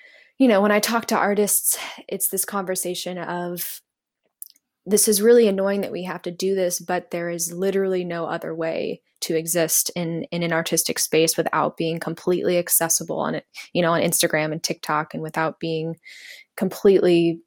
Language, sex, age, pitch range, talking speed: English, female, 10-29, 170-210 Hz, 175 wpm